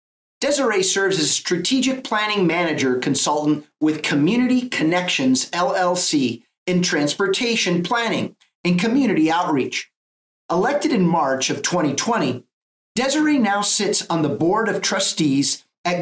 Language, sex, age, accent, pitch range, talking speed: English, male, 50-69, American, 160-230 Hz, 120 wpm